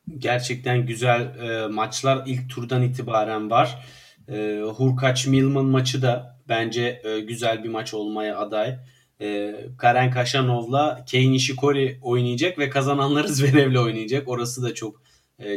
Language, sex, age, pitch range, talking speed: Turkish, male, 40-59, 120-140 Hz, 125 wpm